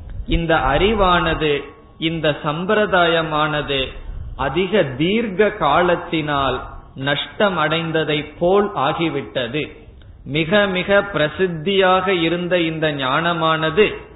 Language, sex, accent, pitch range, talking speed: Tamil, male, native, 145-185 Hz, 60 wpm